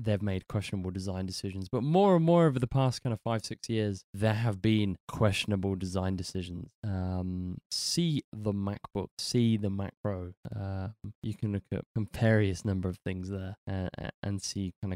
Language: English